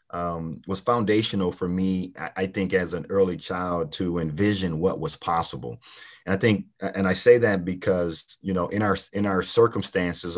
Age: 30-49